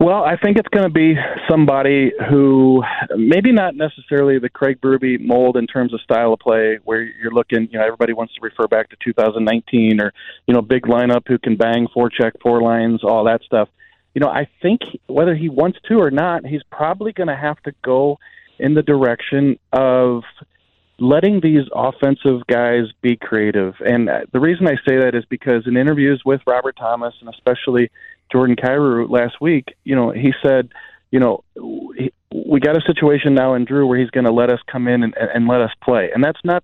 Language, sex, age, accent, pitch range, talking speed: English, male, 40-59, American, 120-140 Hz, 205 wpm